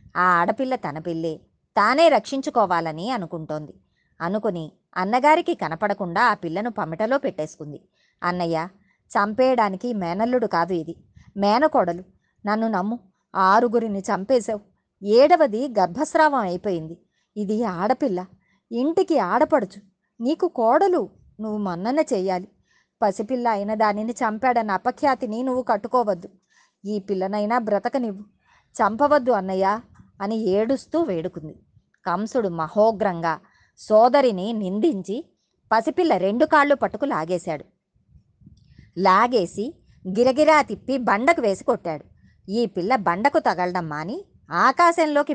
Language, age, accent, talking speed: Telugu, 20-39, native, 95 wpm